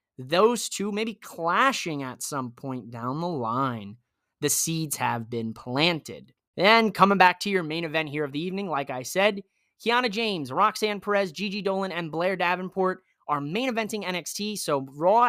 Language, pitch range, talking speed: English, 140-190 Hz, 175 wpm